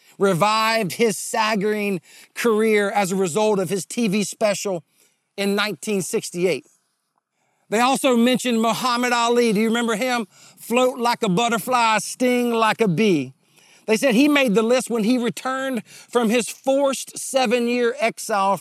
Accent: American